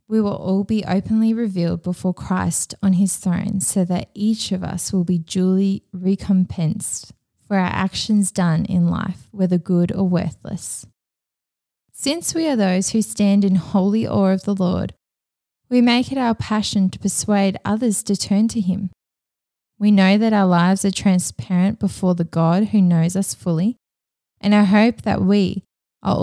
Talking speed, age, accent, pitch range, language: 170 wpm, 20-39, Australian, 180-220 Hz, English